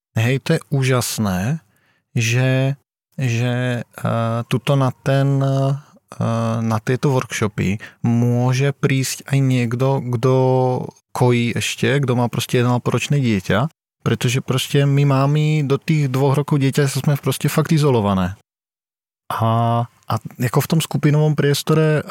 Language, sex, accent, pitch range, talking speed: Czech, male, native, 120-145 Hz, 120 wpm